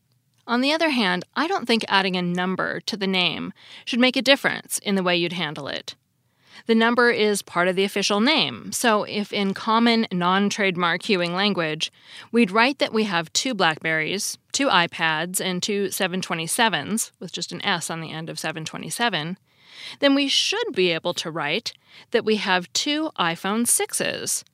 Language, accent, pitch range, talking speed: English, American, 175-230 Hz, 175 wpm